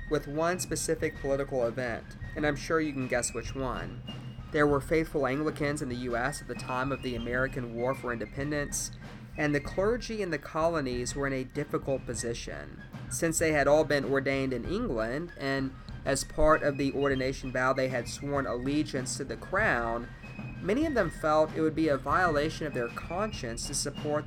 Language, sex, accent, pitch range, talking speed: English, male, American, 120-145 Hz, 190 wpm